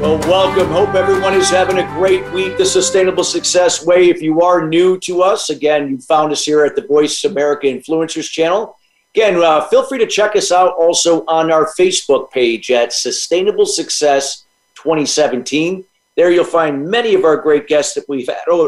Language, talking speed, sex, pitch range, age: English, 185 wpm, male, 140-185 Hz, 50-69